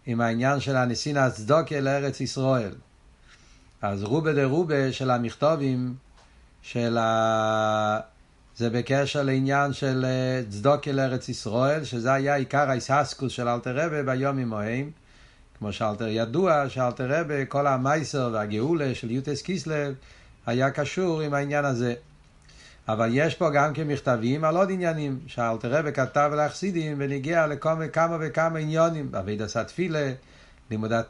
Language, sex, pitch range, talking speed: Hebrew, male, 120-150 Hz, 135 wpm